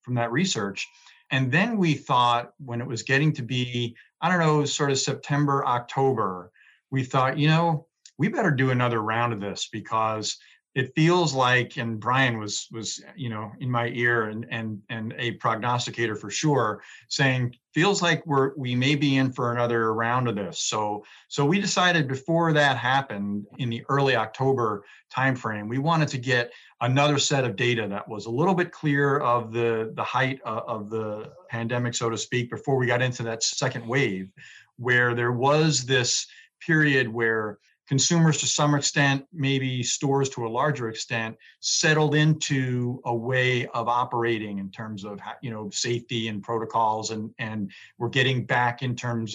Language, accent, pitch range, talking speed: English, American, 115-140 Hz, 175 wpm